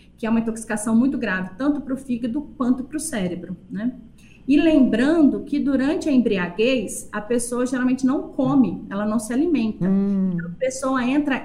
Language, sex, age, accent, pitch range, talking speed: Portuguese, female, 30-49, Brazilian, 215-275 Hz, 180 wpm